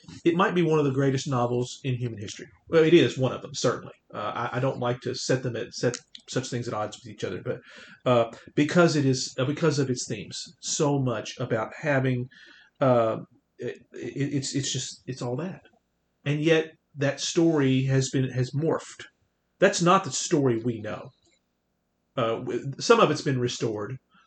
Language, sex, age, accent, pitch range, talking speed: English, male, 40-59, American, 120-145 Hz, 195 wpm